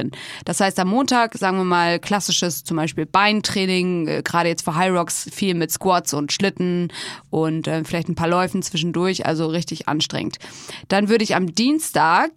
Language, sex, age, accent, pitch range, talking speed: German, female, 20-39, German, 175-210 Hz, 175 wpm